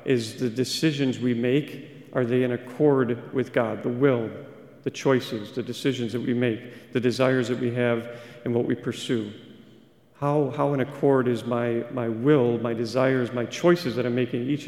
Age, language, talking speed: 40-59, English, 185 wpm